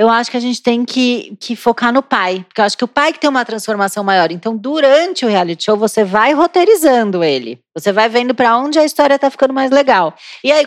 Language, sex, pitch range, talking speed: Portuguese, female, 215-270 Hz, 255 wpm